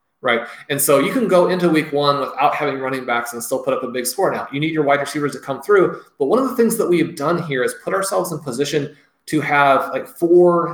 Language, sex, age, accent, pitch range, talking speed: English, male, 30-49, American, 135-165 Hz, 265 wpm